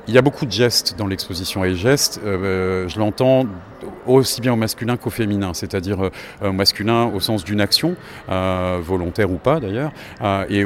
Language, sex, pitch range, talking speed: French, male, 100-120 Hz, 180 wpm